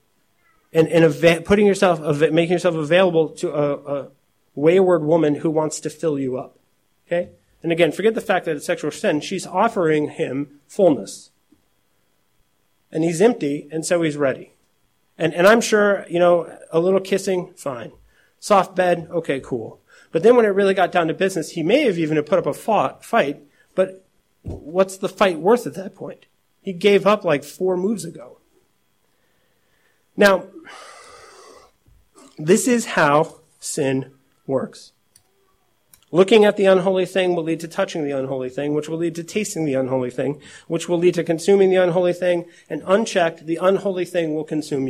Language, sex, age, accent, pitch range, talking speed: English, male, 30-49, American, 155-190 Hz, 170 wpm